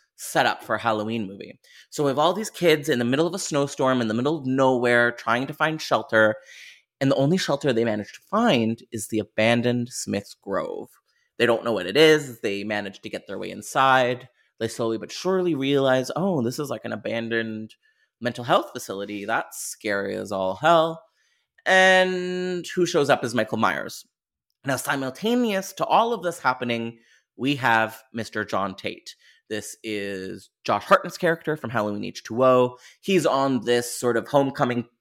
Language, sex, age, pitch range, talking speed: English, male, 30-49, 110-150 Hz, 180 wpm